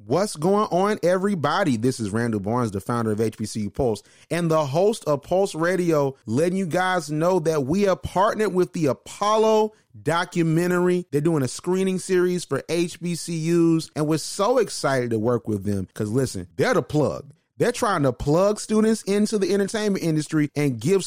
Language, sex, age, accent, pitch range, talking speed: English, male, 30-49, American, 135-190 Hz, 175 wpm